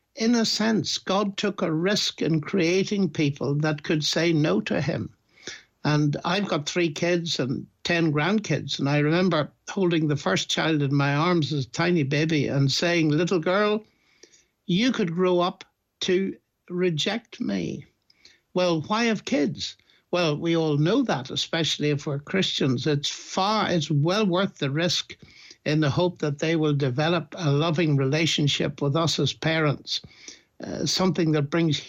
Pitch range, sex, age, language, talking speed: 150-185 Hz, male, 60-79, English, 165 wpm